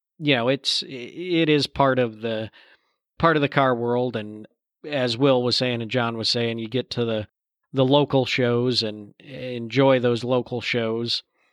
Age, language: 40-59, English